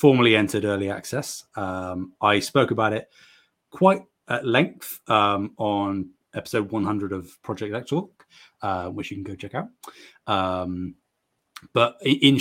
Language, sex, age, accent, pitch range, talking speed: English, male, 20-39, British, 95-115 Hz, 140 wpm